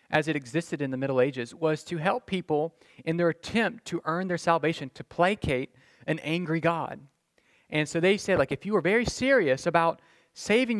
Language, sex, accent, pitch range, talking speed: English, male, American, 140-195 Hz, 195 wpm